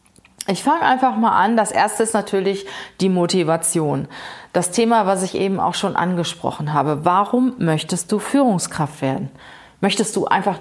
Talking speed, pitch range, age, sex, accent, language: 160 wpm, 175-220 Hz, 30-49, female, German, German